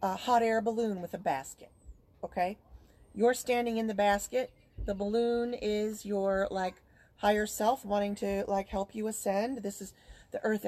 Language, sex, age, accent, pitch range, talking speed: English, female, 30-49, American, 190-230 Hz, 170 wpm